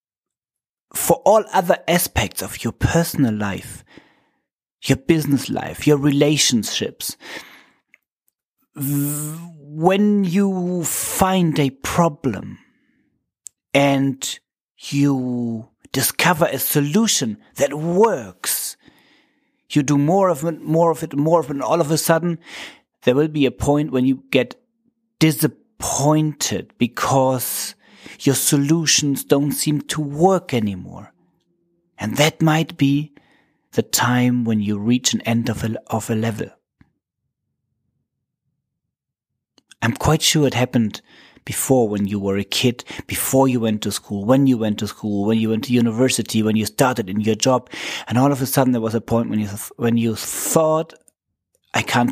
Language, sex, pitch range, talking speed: English, male, 115-160 Hz, 140 wpm